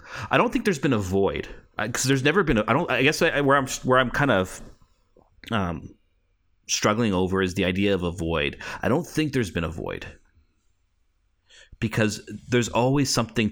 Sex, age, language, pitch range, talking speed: male, 30-49, English, 85-110 Hz, 195 wpm